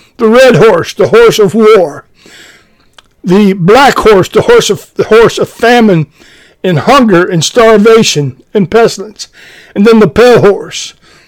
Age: 60-79